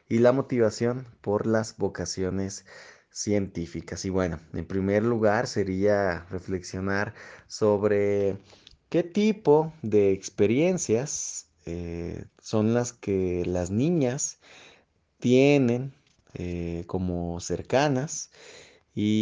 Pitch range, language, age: 95-125 Hz, Spanish, 20-39